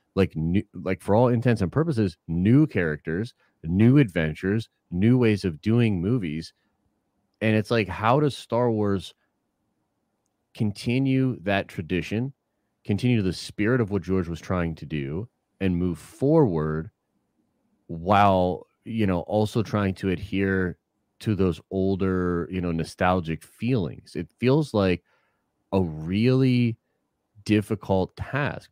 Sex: male